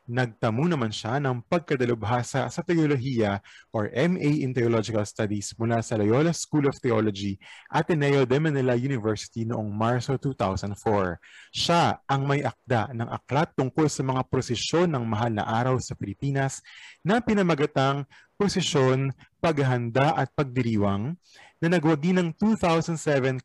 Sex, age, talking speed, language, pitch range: male, 20-39, 130 wpm, Filipino, 115-155 Hz